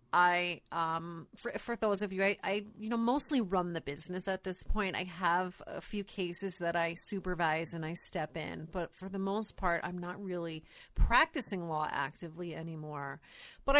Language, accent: English, American